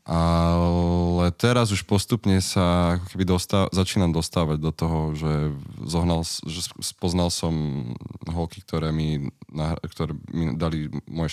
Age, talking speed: 20-39, 120 wpm